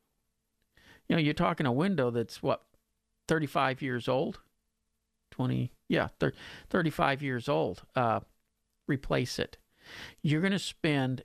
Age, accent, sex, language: 50-69, American, male, English